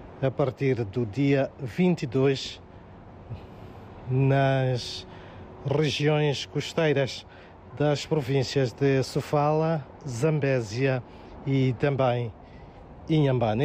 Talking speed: 70 wpm